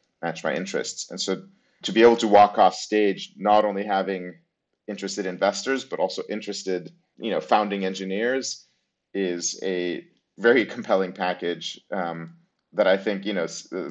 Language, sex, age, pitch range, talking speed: English, male, 40-59, 90-105 Hz, 155 wpm